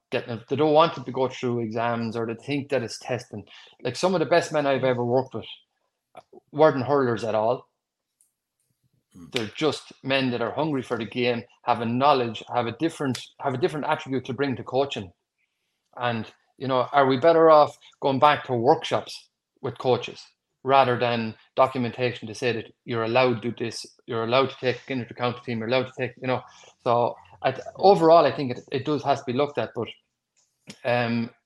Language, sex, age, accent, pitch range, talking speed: English, male, 30-49, Irish, 115-140 Hz, 195 wpm